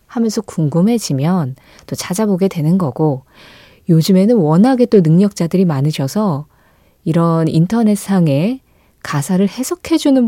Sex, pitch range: female, 155-240 Hz